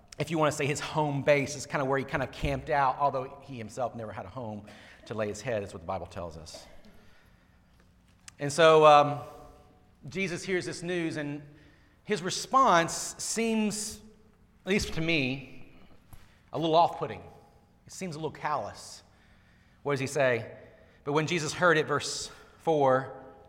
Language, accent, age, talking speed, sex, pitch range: English, American, 40-59, 175 wpm, male, 130-185 Hz